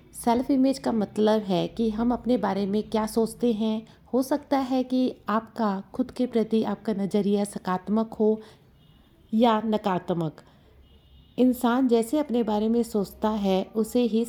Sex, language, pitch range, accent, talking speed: female, Hindi, 200-235 Hz, native, 150 wpm